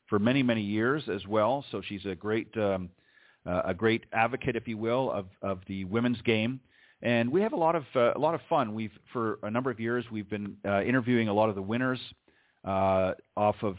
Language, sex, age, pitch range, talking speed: English, male, 40-59, 100-120 Hz, 225 wpm